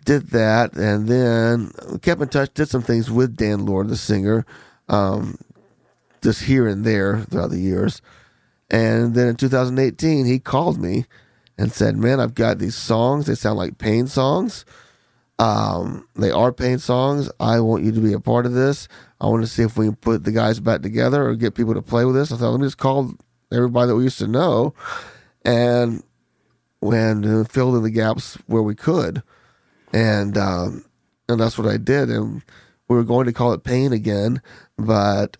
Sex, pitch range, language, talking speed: male, 105-125 Hz, English, 190 wpm